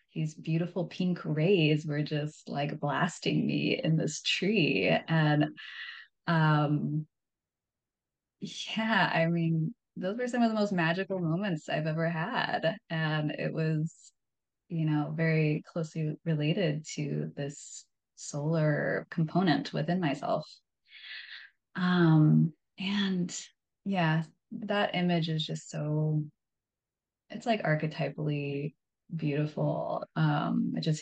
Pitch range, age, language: 150-175 Hz, 20-39, English